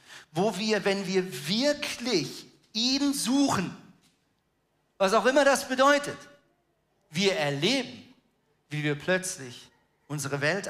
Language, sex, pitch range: German, male, 155-260 Hz